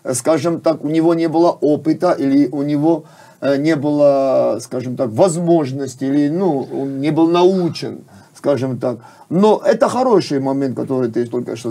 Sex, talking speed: male, 160 wpm